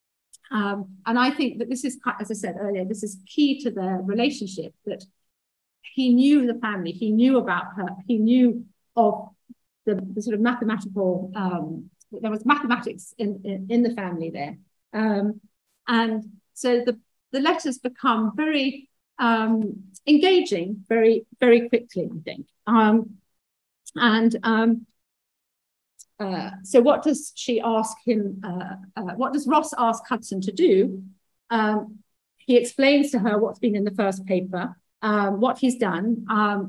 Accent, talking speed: British, 155 wpm